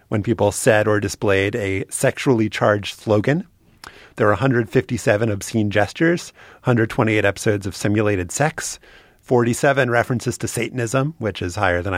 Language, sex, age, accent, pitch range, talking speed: English, male, 30-49, American, 105-135 Hz, 135 wpm